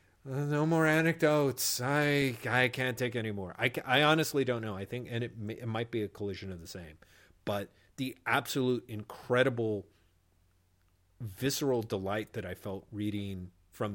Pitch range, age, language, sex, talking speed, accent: 95-125 Hz, 40-59, English, male, 165 wpm, American